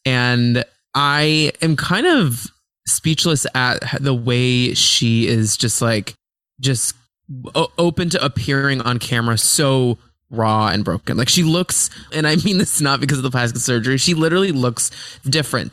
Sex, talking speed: male, 155 wpm